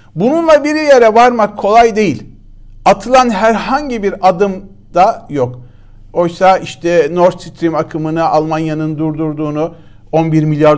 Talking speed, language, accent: 115 wpm, Turkish, native